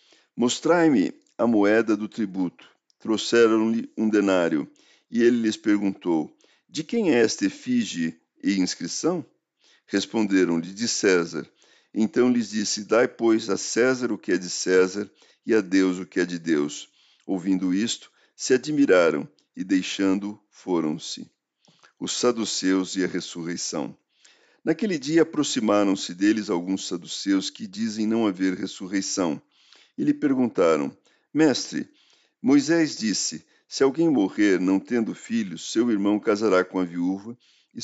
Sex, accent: male, Brazilian